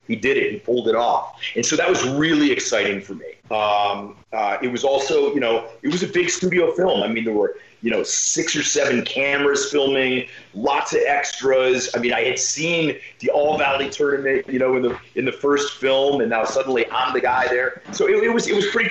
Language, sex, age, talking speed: English, male, 30-49, 230 wpm